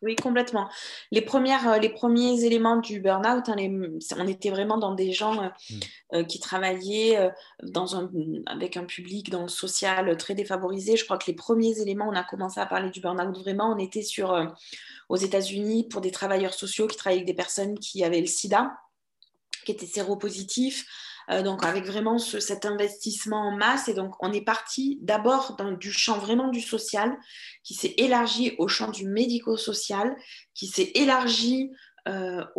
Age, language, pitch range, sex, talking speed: 20-39, French, 190-235 Hz, female, 175 wpm